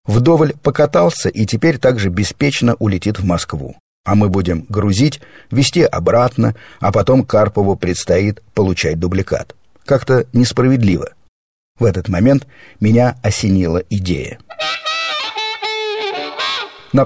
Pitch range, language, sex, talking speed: 95-120 Hz, Russian, male, 105 wpm